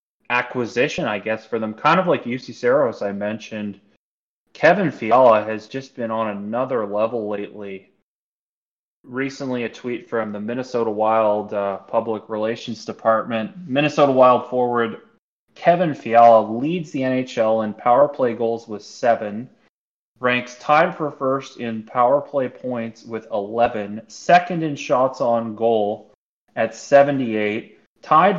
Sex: male